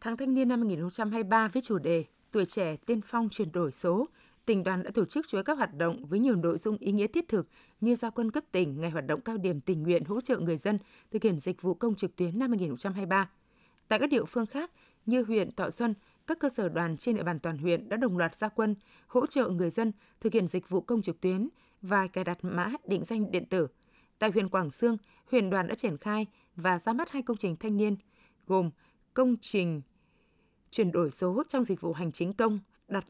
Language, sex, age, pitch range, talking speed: Vietnamese, female, 20-39, 180-235 Hz, 235 wpm